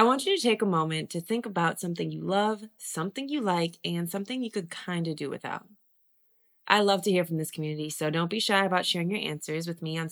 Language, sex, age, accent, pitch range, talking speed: English, female, 20-39, American, 160-210 Hz, 250 wpm